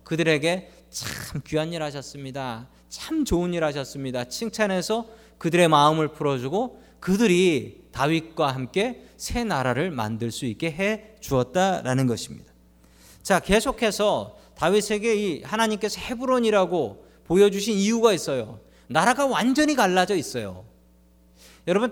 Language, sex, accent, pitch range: Korean, male, native, 120-185 Hz